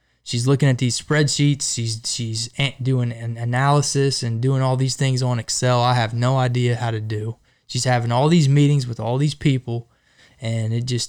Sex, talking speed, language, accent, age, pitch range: male, 195 wpm, English, American, 20-39, 115-135 Hz